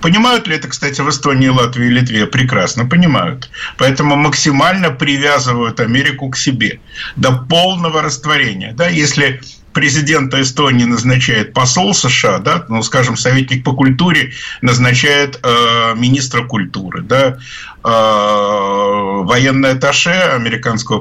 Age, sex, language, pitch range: 50-69, male, Russian, 125-160 Hz